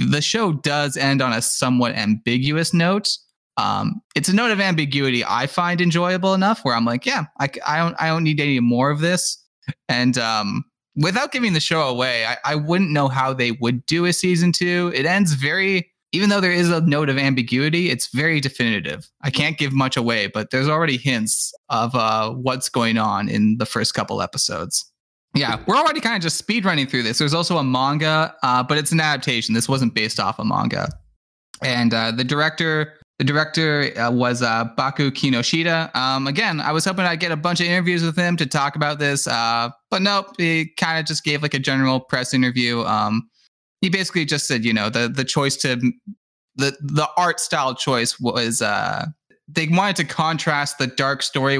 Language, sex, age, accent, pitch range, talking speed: English, male, 20-39, American, 125-170 Hz, 200 wpm